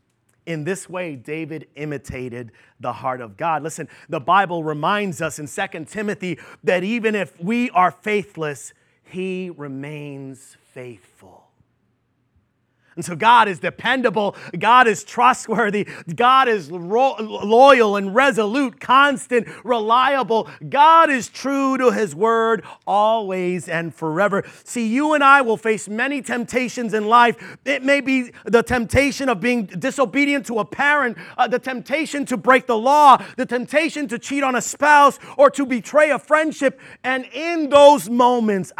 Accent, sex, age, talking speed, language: American, male, 30-49, 145 wpm, English